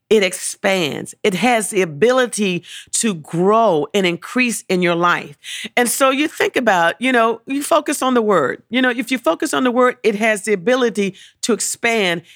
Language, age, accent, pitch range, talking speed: English, 40-59, American, 200-265 Hz, 190 wpm